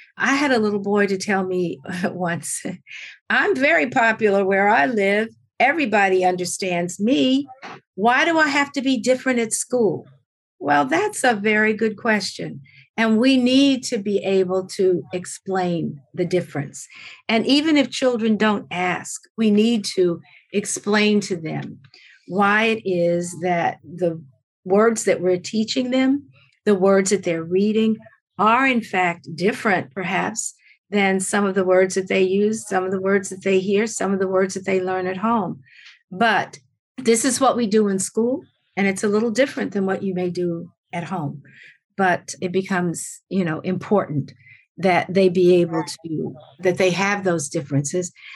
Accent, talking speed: American, 165 wpm